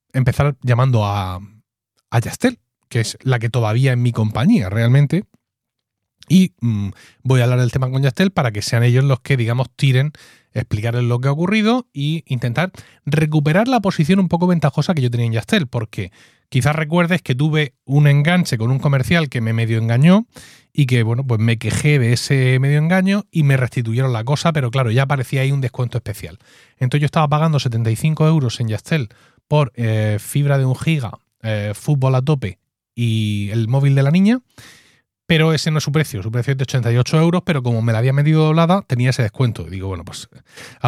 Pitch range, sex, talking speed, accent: 115-150 Hz, male, 200 wpm, Spanish